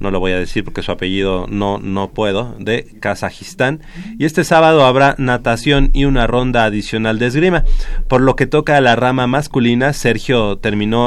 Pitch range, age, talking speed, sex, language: 105-135 Hz, 30-49, 185 wpm, male, Spanish